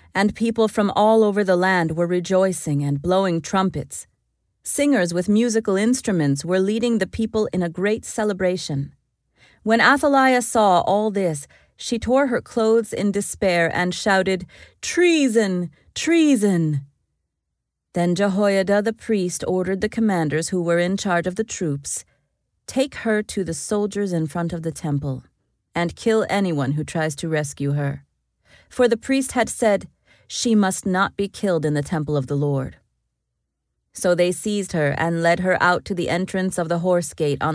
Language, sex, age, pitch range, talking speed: English, female, 30-49, 160-210 Hz, 165 wpm